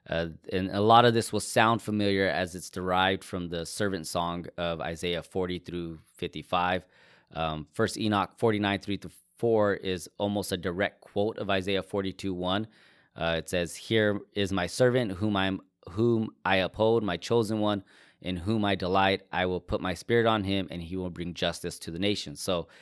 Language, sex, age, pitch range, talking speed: English, male, 20-39, 90-105 Hz, 180 wpm